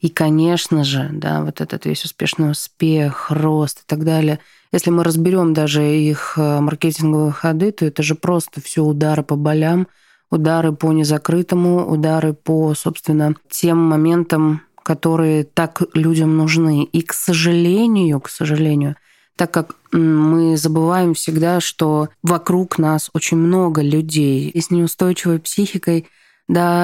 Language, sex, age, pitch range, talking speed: Russian, female, 20-39, 155-175 Hz, 135 wpm